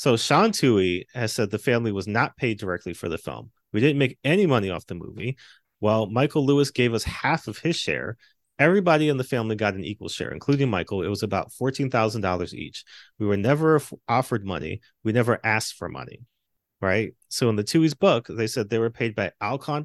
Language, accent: English, American